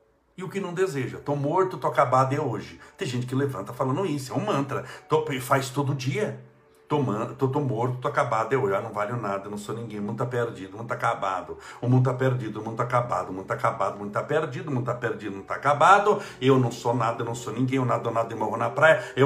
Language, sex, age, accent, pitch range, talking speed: Portuguese, male, 60-79, Brazilian, 130-190 Hz, 265 wpm